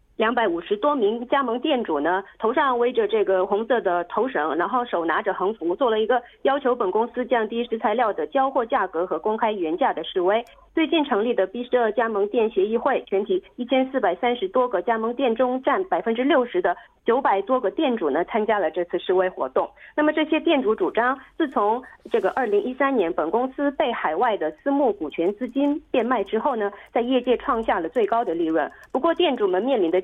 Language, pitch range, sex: Korean, 215-315 Hz, female